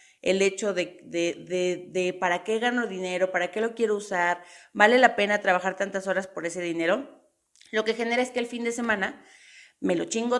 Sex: female